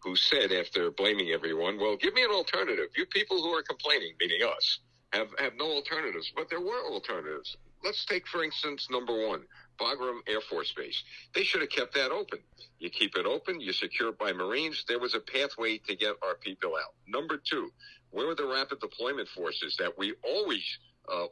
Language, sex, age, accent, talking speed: English, male, 60-79, American, 200 wpm